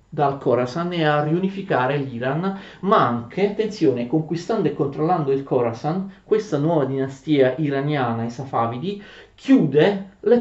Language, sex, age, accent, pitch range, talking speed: Italian, male, 40-59, native, 125-165 Hz, 125 wpm